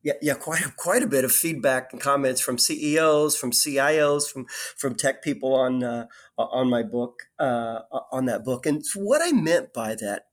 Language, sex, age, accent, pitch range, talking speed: English, male, 40-59, American, 130-195 Hz, 190 wpm